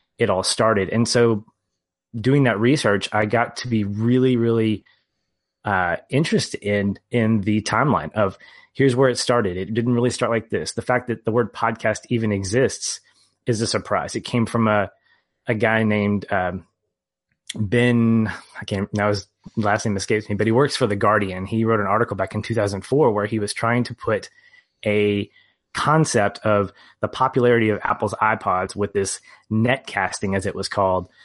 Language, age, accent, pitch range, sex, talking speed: English, 30-49, American, 100-120 Hz, male, 180 wpm